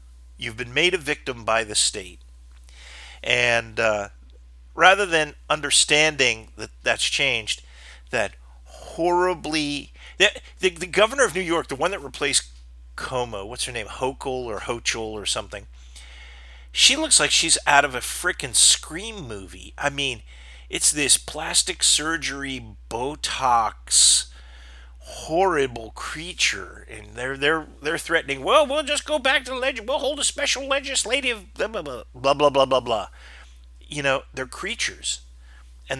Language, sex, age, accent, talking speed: English, male, 40-59, American, 145 wpm